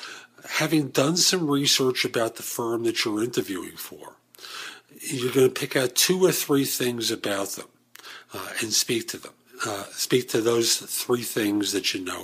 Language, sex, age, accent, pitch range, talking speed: English, male, 50-69, American, 120-175 Hz, 175 wpm